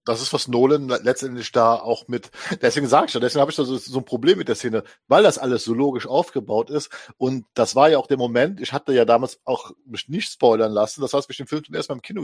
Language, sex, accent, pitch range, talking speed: German, male, German, 125-155 Hz, 275 wpm